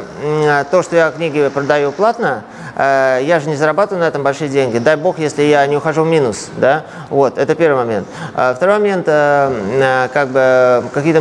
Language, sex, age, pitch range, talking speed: Russian, male, 20-39, 135-165 Hz, 170 wpm